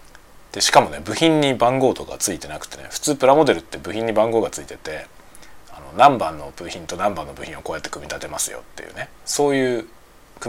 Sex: male